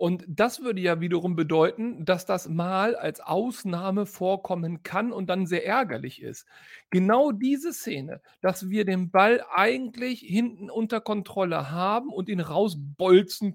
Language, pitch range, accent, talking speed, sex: German, 185-245 Hz, German, 145 wpm, male